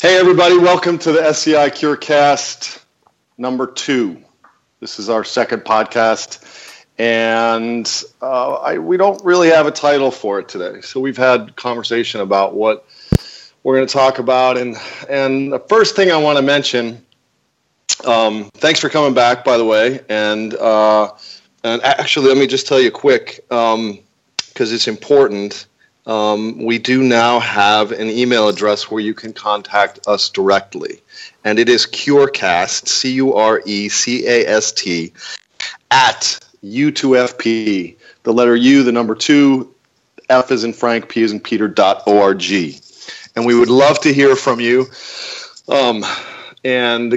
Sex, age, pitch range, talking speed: male, 40-59, 110-145 Hz, 145 wpm